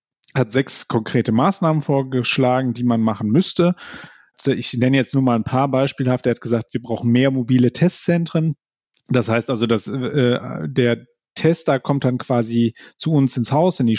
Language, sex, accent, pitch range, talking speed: German, male, German, 120-140 Hz, 185 wpm